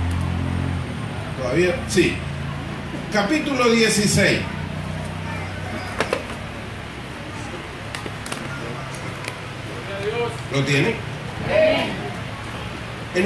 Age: 40-59